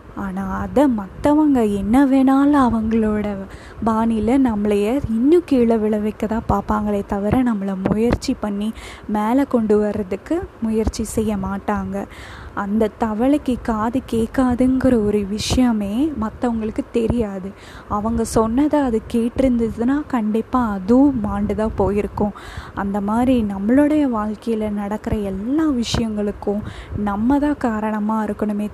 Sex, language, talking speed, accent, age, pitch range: female, Tamil, 100 wpm, native, 20-39, 205-245 Hz